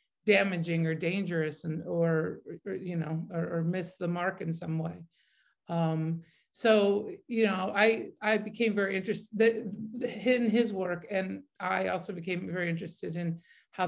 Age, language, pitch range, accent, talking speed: 50-69, English, 170-210 Hz, American, 155 wpm